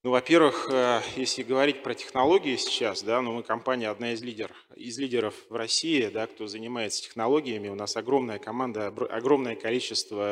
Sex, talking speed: male, 165 wpm